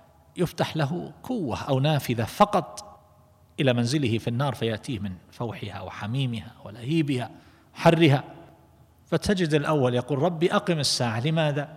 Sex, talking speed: male, 115 wpm